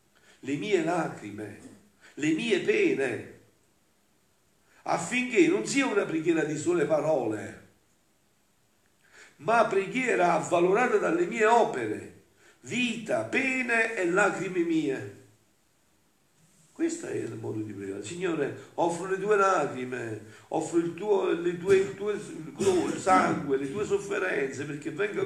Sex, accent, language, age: male, native, Italian, 50-69